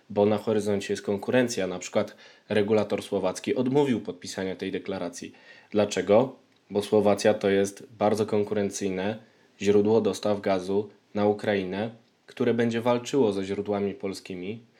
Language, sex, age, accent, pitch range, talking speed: Polish, male, 20-39, native, 100-110 Hz, 125 wpm